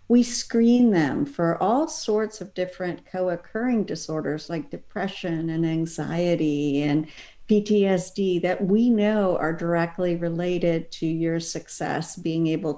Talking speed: 125 wpm